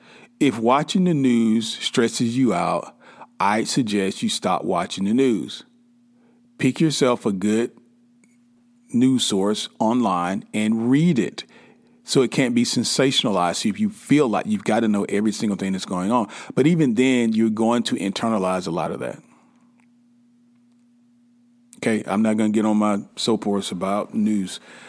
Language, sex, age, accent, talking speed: English, male, 40-59, American, 160 wpm